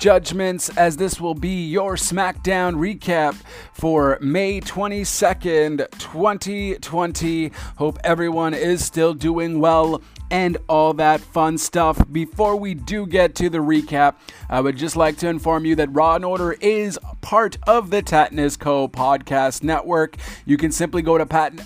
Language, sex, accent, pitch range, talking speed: English, male, American, 135-170 Hz, 150 wpm